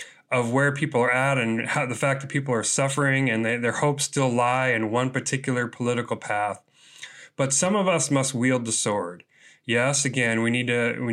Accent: American